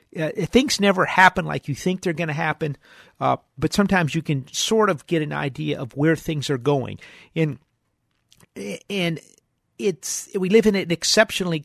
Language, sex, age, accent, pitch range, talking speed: English, male, 50-69, American, 140-175 Hz, 175 wpm